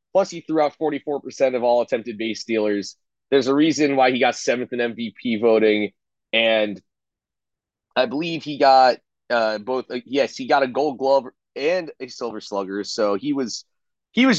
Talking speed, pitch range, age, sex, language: 185 wpm, 105-150 Hz, 30-49, male, English